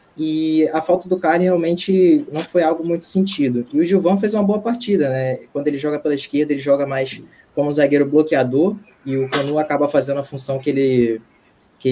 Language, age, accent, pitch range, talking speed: Portuguese, 20-39, Brazilian, 140-180 Hz, 200 wpm